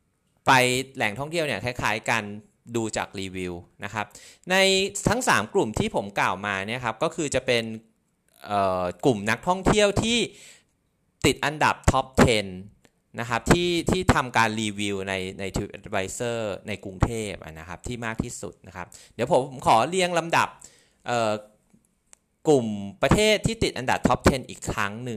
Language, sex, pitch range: Thai, male, 95-140 Hz